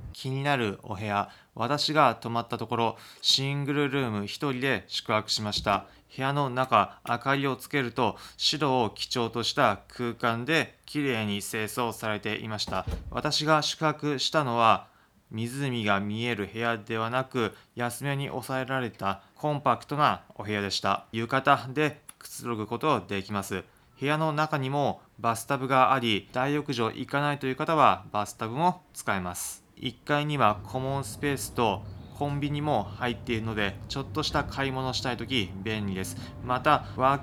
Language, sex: Japanese, male